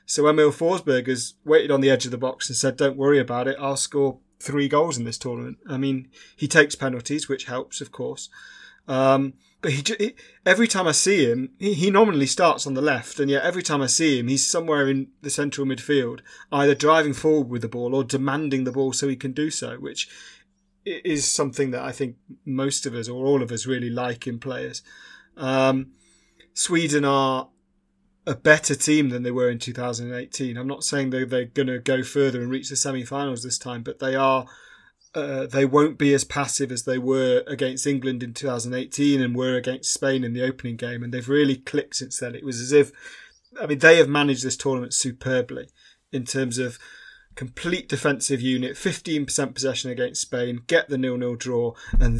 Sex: male